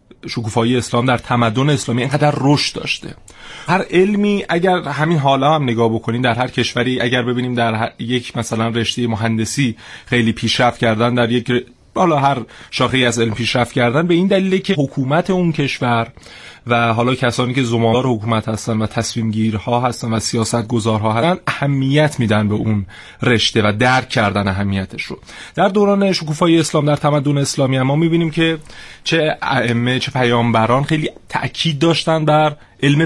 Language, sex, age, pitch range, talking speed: Persian, male, 30-49, 115-140 Hz, 165 wpm